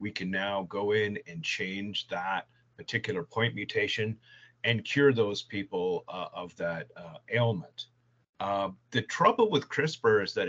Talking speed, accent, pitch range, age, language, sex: 155 wpm, American, 110-125 Hz, 40-59, English, male